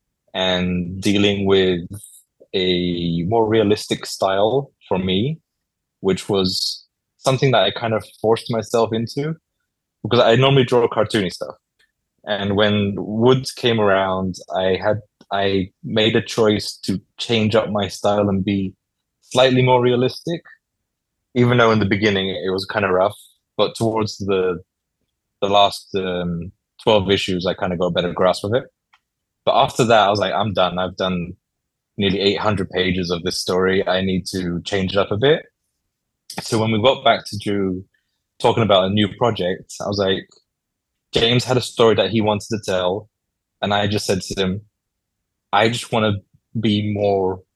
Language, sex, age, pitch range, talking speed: English, male, 20-39, 95-115 Hz, 170 wpm